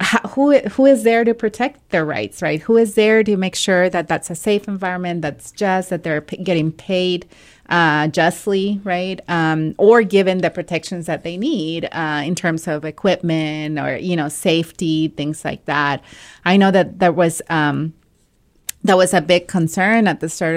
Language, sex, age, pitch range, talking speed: English, female, 30-49, 160-195 Hz, 180 wpm